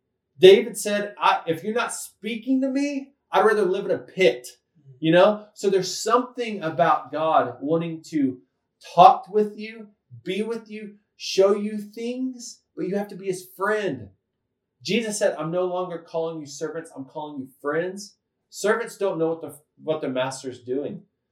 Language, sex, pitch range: English, male, 145-210 Hz